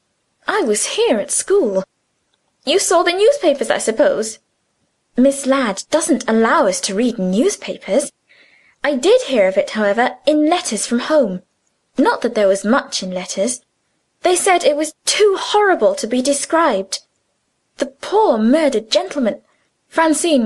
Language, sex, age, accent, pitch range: Korean, female, 20-39, British, 225-315 Hz